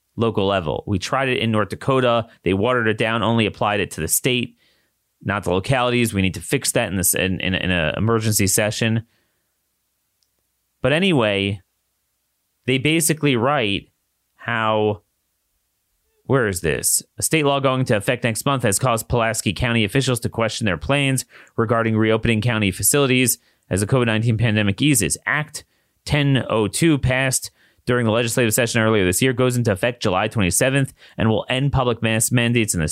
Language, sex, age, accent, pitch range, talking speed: English, male, 30-49, American, 105-130 Hz, 170 wpm